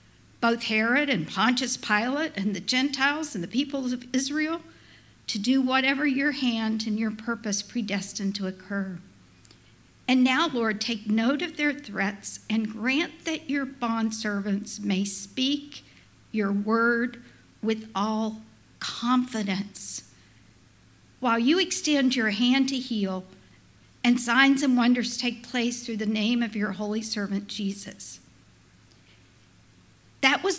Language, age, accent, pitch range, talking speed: English, 60-79, American, 200-260 Hz, 130 wpm